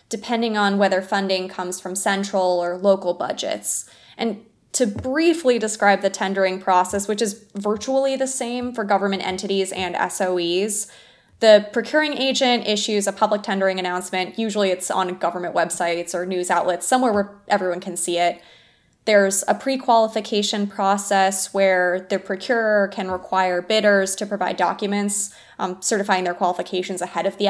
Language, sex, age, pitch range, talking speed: English, female, 20-39, 185-220 Hz, 150 wpm